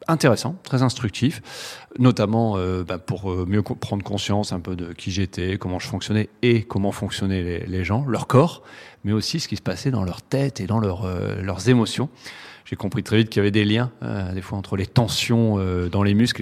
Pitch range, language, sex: 100-120 Hz, French, male